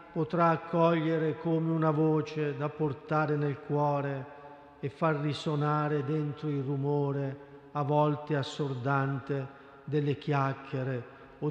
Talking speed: 110 wpm